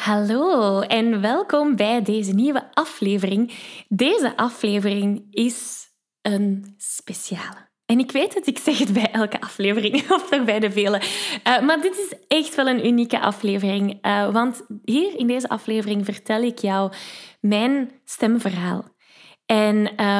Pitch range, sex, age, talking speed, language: 200-245 Hz, female, 10-29, 140 wpm, Dutch